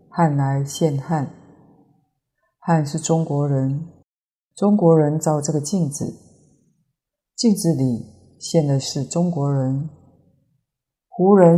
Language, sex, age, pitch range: Chinese, female, 30-49, 140-170 Hz